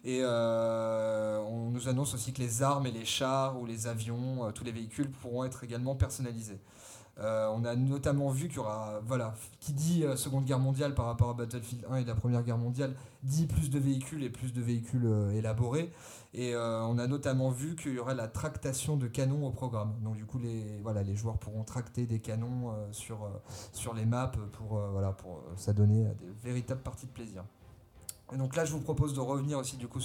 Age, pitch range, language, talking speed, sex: 30-49, 110-135 Hz, French, 220 wpm, male